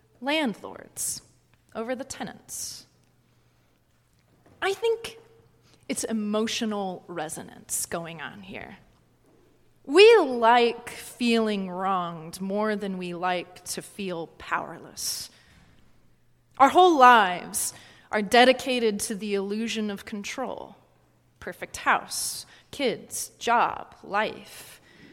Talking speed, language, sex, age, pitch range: 90 wpm, English, female, 30-49, 200-255 Hz